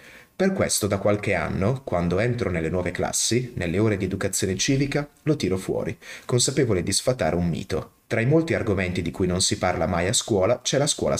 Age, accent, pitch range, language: 30-49, native, 95-120 Hz, Italian